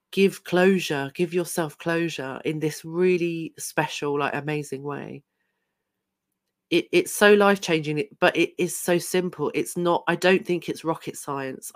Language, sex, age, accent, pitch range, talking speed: English, female, 40-59, British, 150-175 Hz, 145 wpm